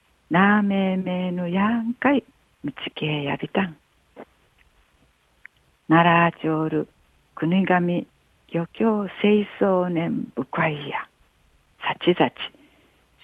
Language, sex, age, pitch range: Japanese, female, 60-79, 150-205 Hz